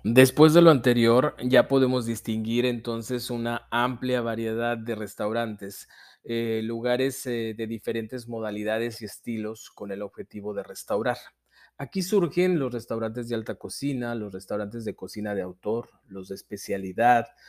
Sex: male